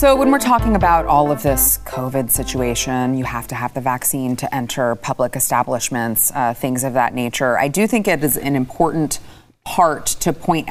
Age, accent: 30-49, American